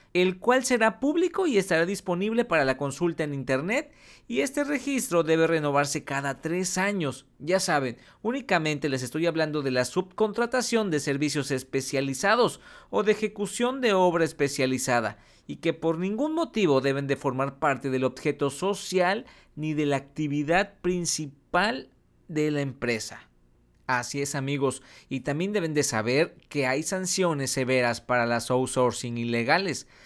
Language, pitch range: Spanish, 130-175 Hz